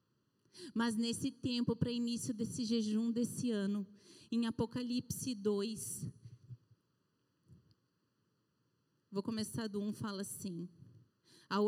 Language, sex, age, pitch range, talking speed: Portuguese, female, 30-49, 210-280 Hz, 100 wpm